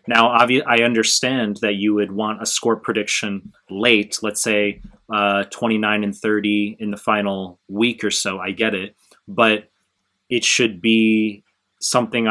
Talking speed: 150 wpm